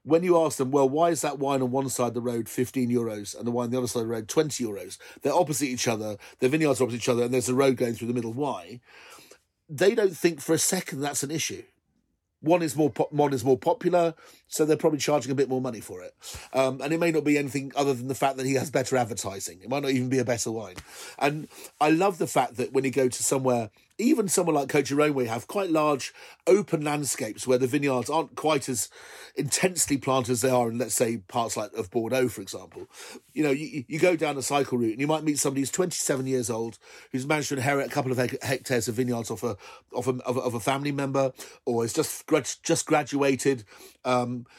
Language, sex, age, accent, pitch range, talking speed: English, male, 40-59, British, 125-150 Hz, 250 wpm